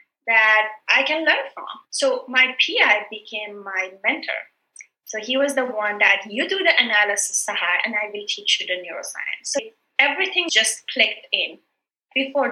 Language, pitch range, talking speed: English, 205-255 Hz, 165 wpm